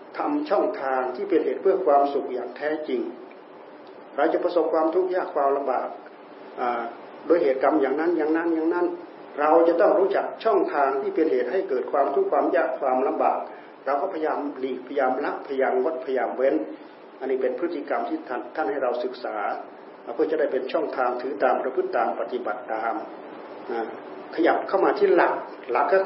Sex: male